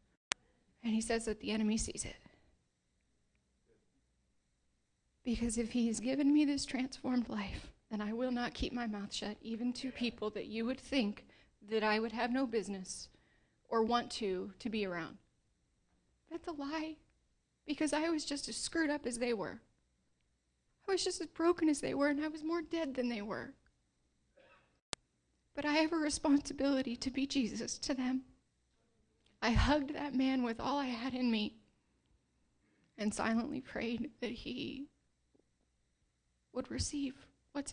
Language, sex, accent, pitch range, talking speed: English, female, American, 225-285 Hz, 160 wpm